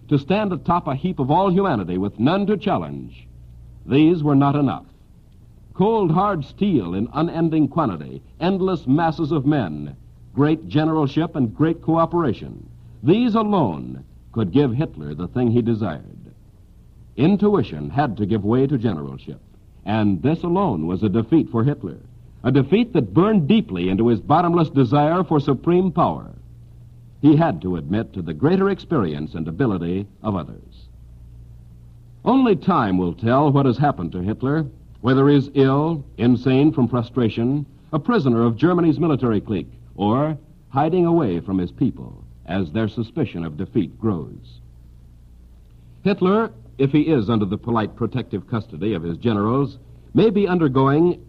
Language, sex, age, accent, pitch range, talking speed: English, male, 60-79, American, 95-155 Hz, 150 wpm